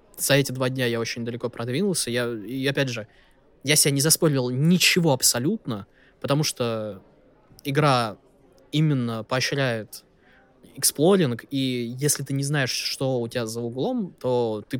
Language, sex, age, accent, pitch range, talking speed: Russian, male, 20-39, native, 120-150 Hz, 140 wpm